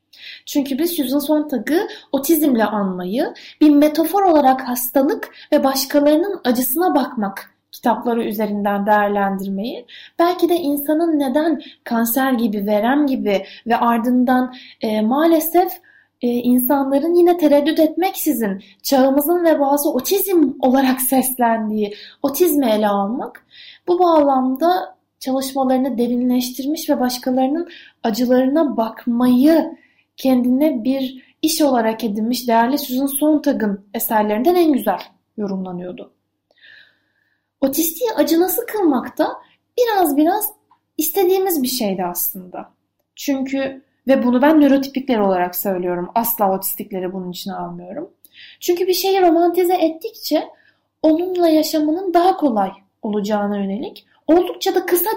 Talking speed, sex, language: 110 wpm, female, Turkish